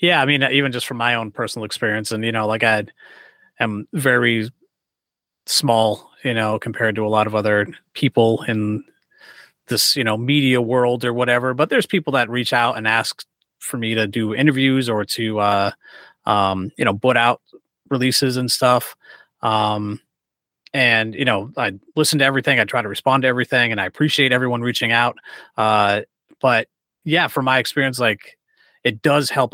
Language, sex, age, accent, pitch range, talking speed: English, male, 30-49, American, 110-135 Hz, 180 wpm